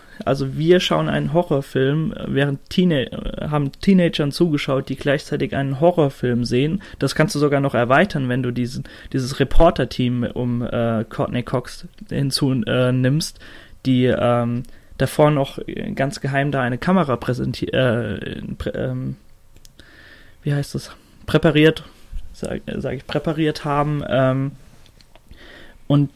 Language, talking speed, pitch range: German, 130 wpm, 125-145 Hz